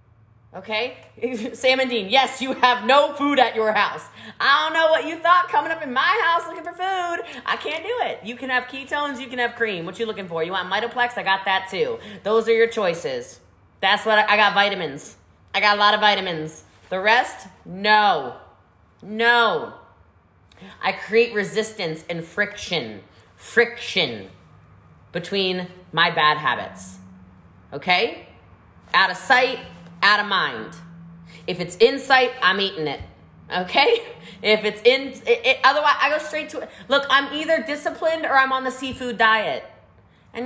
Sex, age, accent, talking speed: female, 20-39, American, 170 wpm